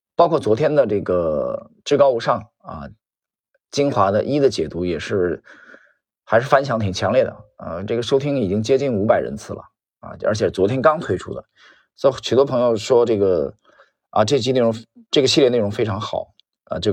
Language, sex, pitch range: Chinese, male, 105-140 Hz